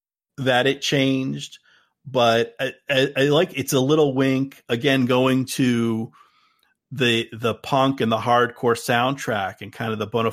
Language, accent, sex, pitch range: English, American, male, 115-135 Hz